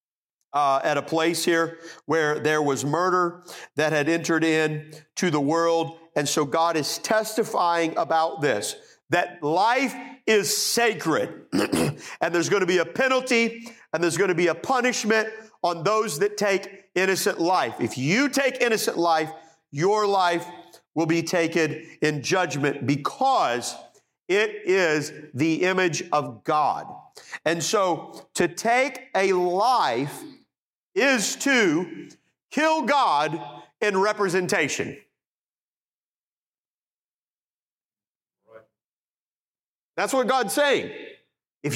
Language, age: English, 50-69